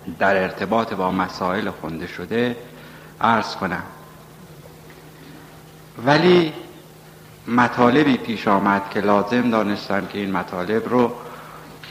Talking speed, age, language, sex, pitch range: 95 wpm, 60-79, Persian, male, 100-130 Hz